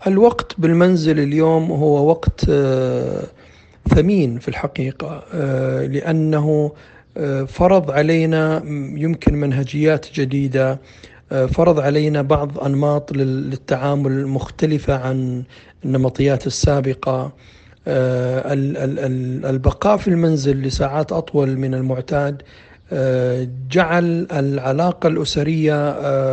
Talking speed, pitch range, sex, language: 75 wpm, 130-150 Hz, male, Arabic